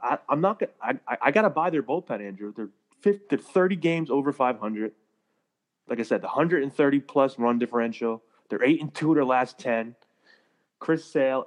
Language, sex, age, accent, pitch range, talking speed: English, male, 30-49, American, 115-135 Hz, 195 wpm